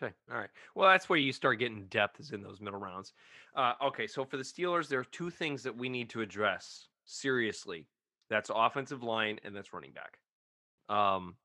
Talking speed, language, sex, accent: 205 wpm, English, male, American